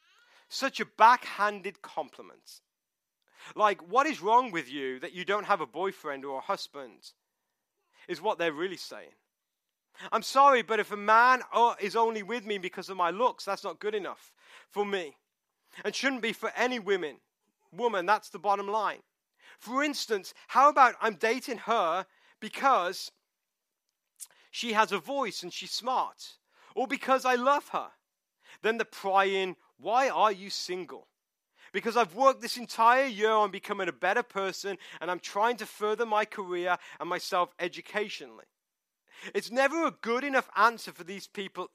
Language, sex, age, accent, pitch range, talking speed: English, male, 40-59, British, 195-255 Hz, 160 wpm